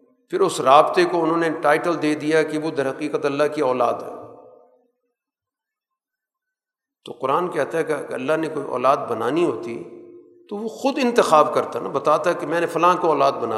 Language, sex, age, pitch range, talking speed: Urdu, male, 50-69, 155-260 Hz, 190 wpm